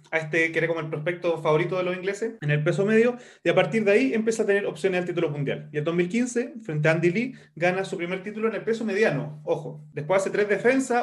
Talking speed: 255 wpm